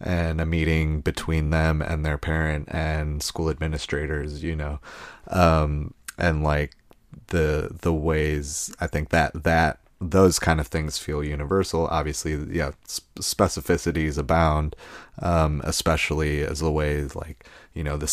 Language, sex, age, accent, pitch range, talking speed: English, male, 30-49, American, 75-85 Hz, 140 wpm